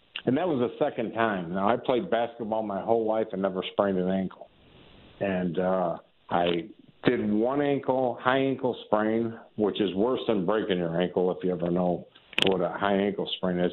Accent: American